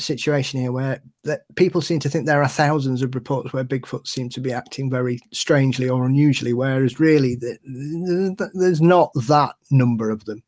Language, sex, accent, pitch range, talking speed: English, male, British, 125-155 Hz, 170 wpm